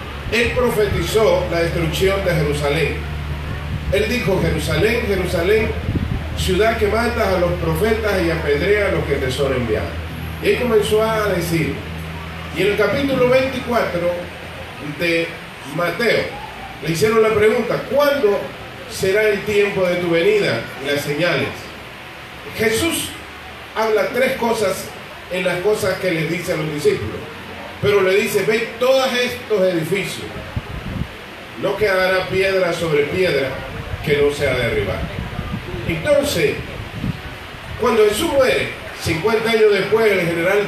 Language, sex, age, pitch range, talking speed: English, male, 40-59, 145-220 Hz, 130 wpm